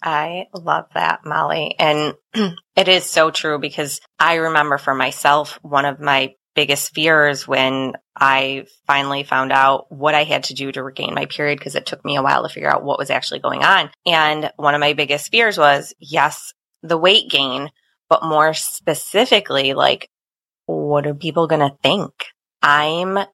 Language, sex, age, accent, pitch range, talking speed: English, female, 20-39, American, 145-175 Hz, 175 wpm